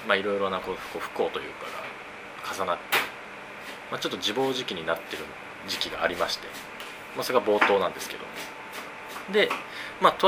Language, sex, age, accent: Japanese, male, 20-39, native